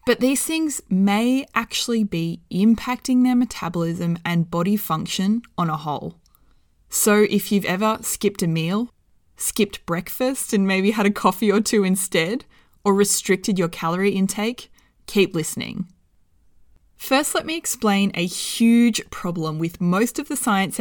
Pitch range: 175-230 Hz